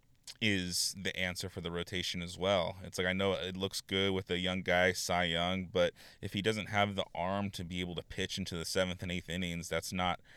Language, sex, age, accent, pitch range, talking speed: English, male, 20-39, American, 85-95 Hz, 235 wpm